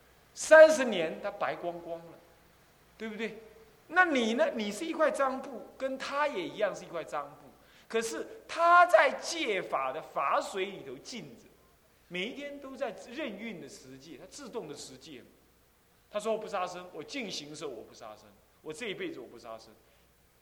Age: 30-49